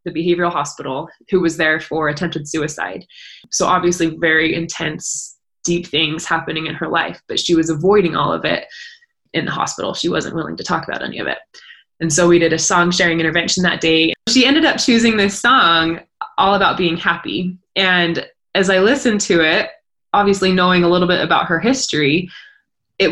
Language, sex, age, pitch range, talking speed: English, female, 20-39, 165-195 Hz, 190 wpm